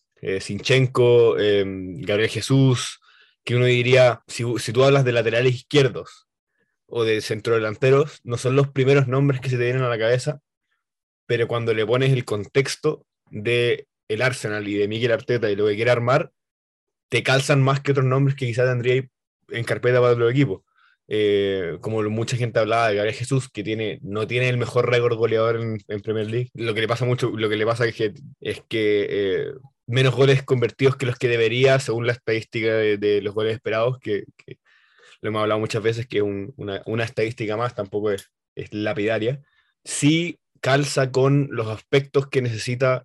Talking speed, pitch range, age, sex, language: 190 wpm, 110-135 Hz, 20-39, male, English